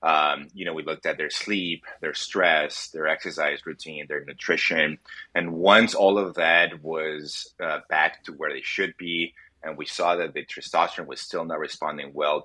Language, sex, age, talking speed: English, male, 30-49, 190 wpm